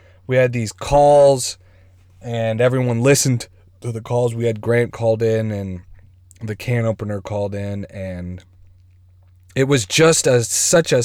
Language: English